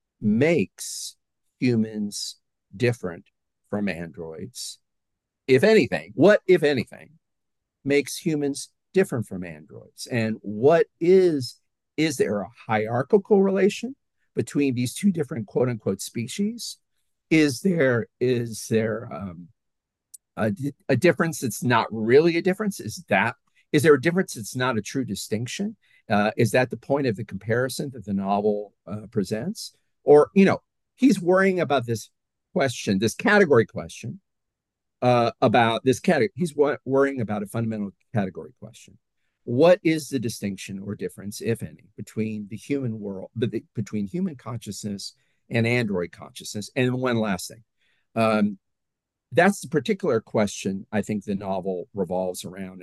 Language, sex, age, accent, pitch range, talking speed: English, male, 50-69, American, 105-150 Hz, 140 wpm